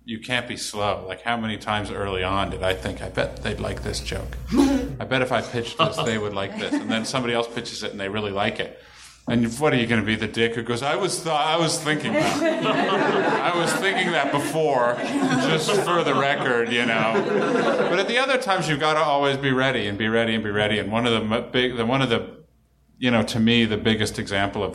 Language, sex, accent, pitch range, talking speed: English, male, American, 100-130 Hz, 250 wpm